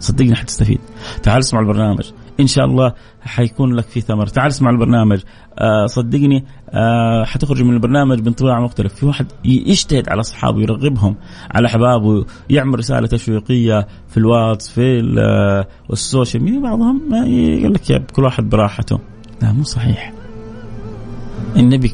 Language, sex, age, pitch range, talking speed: Arabic, male, 30-49, 105-130 Hz, 135 wpm